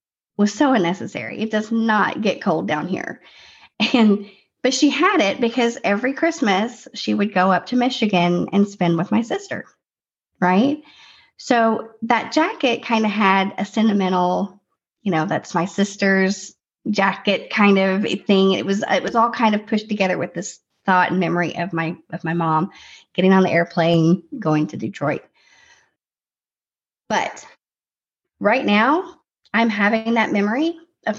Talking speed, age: 155 wpm, 40-59